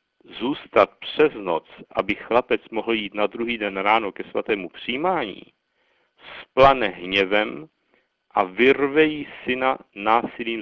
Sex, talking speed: male, 115 wpm